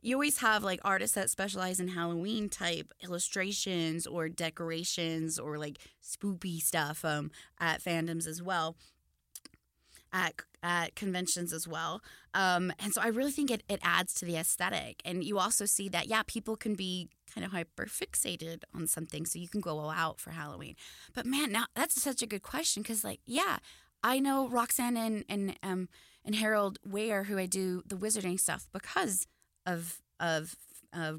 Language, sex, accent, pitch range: English, female, American, 165-205 Hz